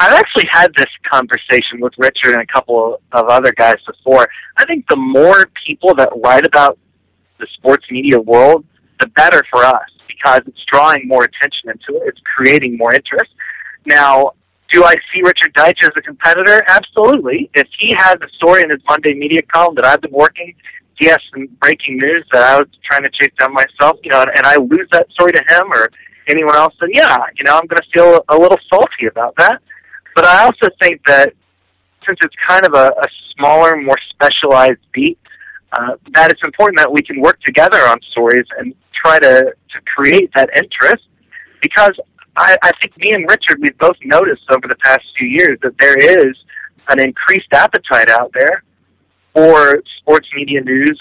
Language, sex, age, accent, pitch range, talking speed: English, male, 30-49, American, 130-175 Hz, 190 wpm